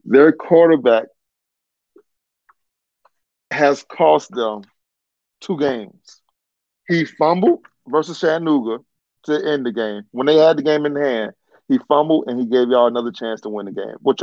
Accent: American